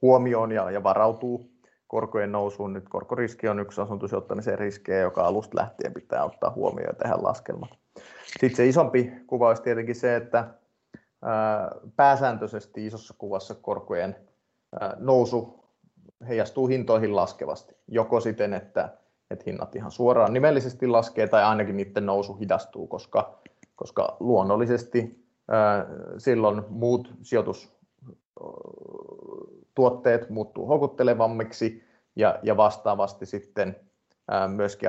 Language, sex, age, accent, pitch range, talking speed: Finnish, male, 30-49, native, 105-125 Hz, 105 wpm